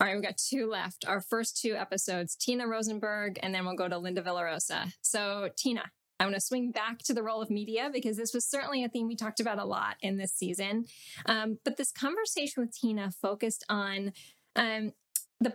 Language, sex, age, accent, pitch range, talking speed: English, female, 10-29, American, 185-230 Hz, 210 wpm